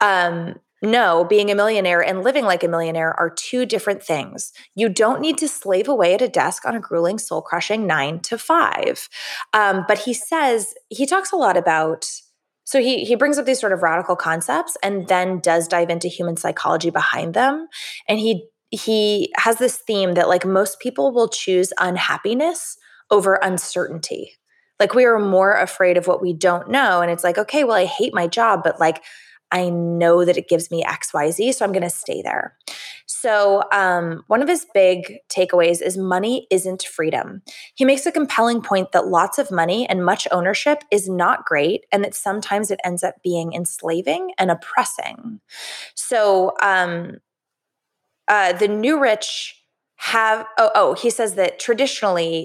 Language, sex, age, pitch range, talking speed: English, female, 20-39, 175-230 Hz, 180 wpm